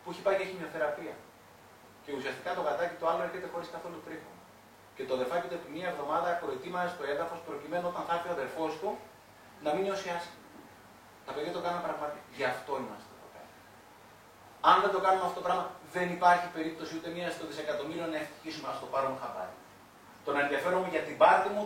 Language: Greek